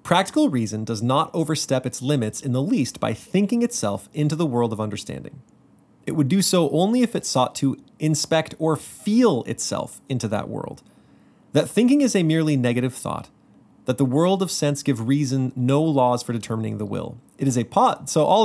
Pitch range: 130-175 Hz